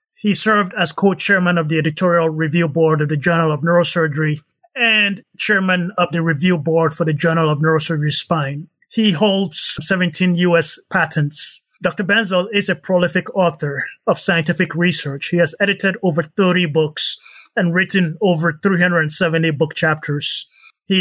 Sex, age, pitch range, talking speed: male, 30-49, 160-185 Hz, 155 wpm